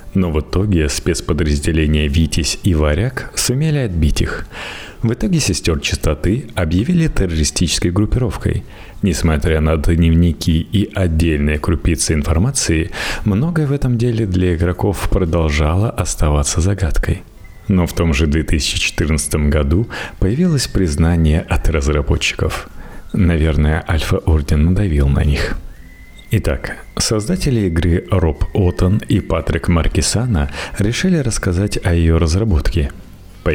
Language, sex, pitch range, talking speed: Russian, male, 80-105 Hz, 110 wpm